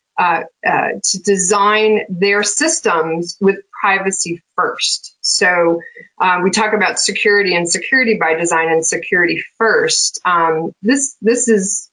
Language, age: English, 30-49